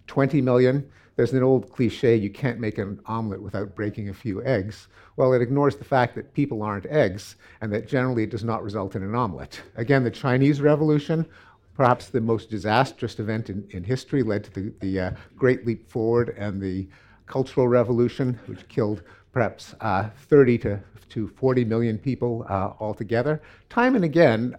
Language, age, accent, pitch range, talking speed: English, 50-69, American, 105-135 Hz, 180 wpm